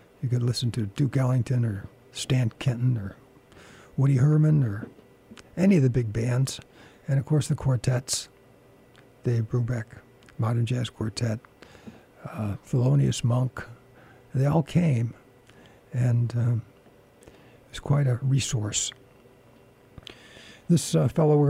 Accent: American